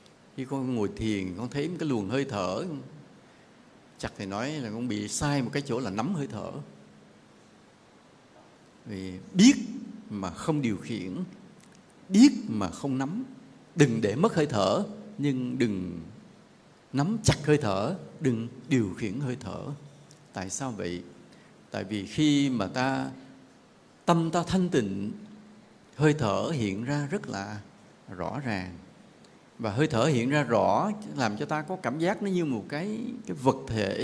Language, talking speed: English, 160 wpm